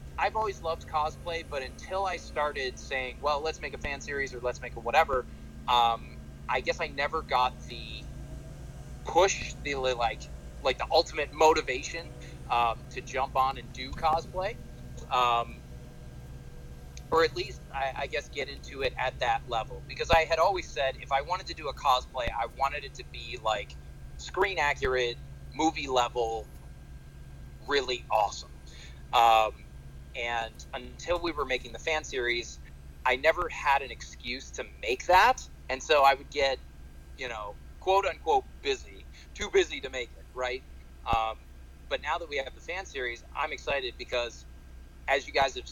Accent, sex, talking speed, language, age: American, male, 165 wpm, English, 30-49